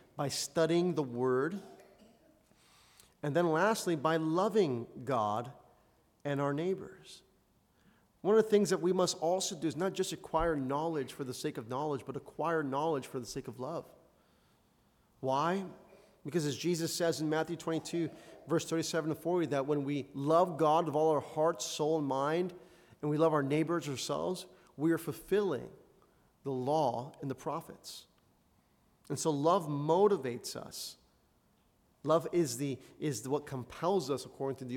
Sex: male